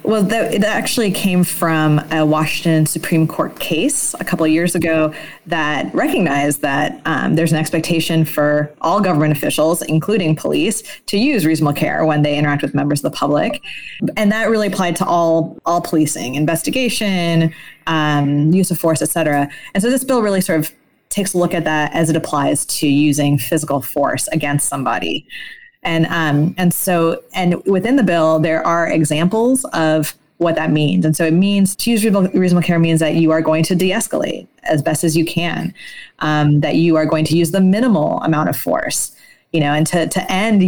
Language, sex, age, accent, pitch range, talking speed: English, female, 20-39, American, 155-185 Hz, 190 wpm